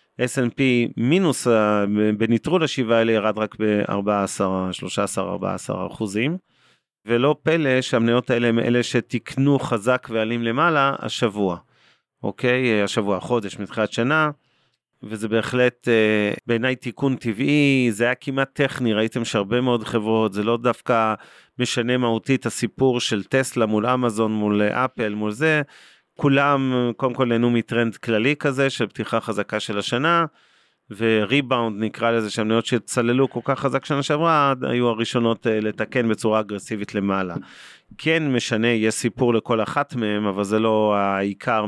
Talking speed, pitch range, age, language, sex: 130 wpm, 110-130 Hz, 40-59, Hebrew, male